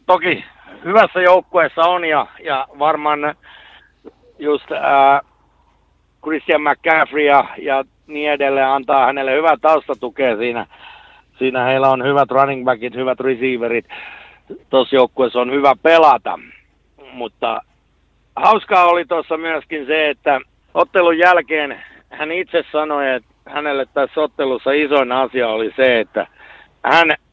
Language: Finnish